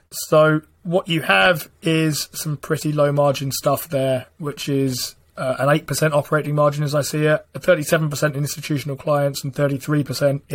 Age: 20-39